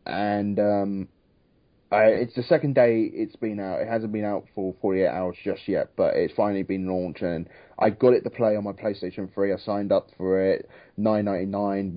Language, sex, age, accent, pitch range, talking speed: English, male, 30-49, British, 100-120 Hz, 200 wpm